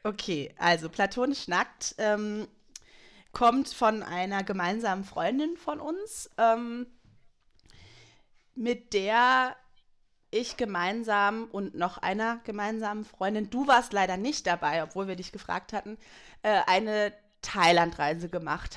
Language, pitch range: German, 190-245 Hz